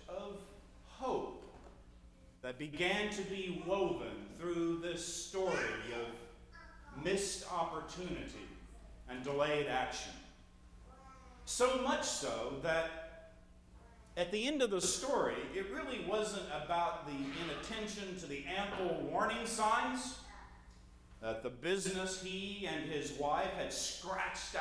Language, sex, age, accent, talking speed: English, male, 40-59, American, 110 wpm